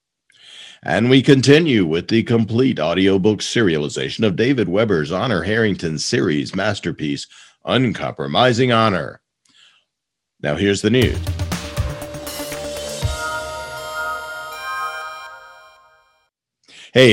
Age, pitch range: 50-69, 95-135 Hz